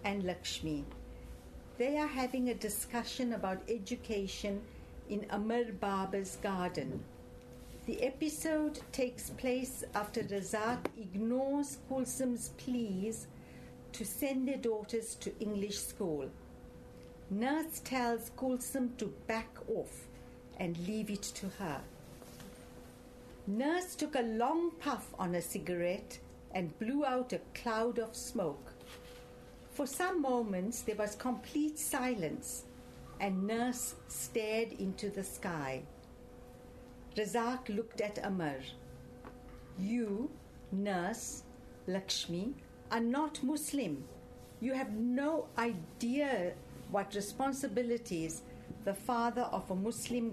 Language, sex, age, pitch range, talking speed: English, female, 60-79, 195-255 Hz, 105 wpm